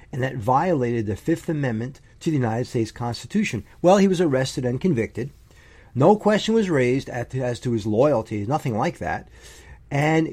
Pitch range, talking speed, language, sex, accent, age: 115-155 Hz, 170 wpm, English, male, American, 40-59